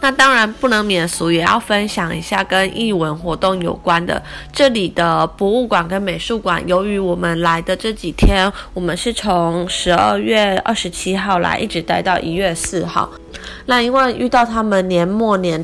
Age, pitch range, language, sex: 20-39, 175-225 Hz, Chinese, female